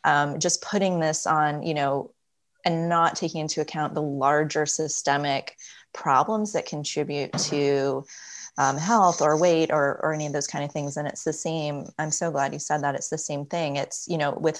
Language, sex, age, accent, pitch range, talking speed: English, female, 20-39, American, 145-170 Hz, 200 wpm